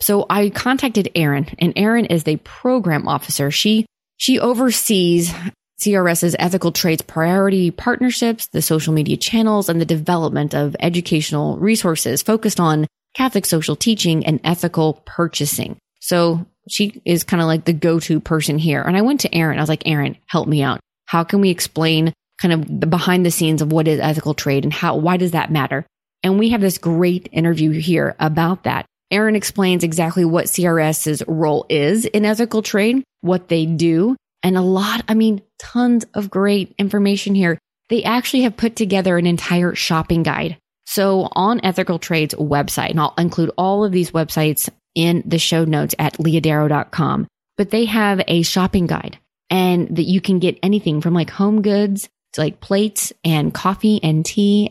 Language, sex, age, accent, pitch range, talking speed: English, female, 20-39, American, 160-205 Hz, 175 wpm